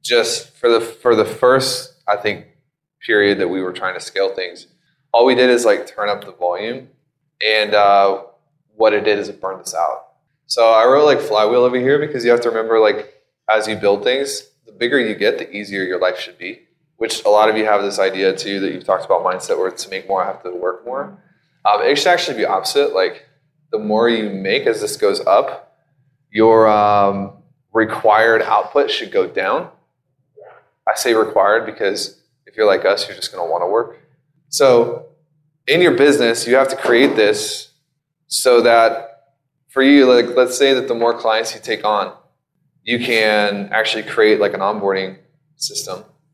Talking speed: 200 wpm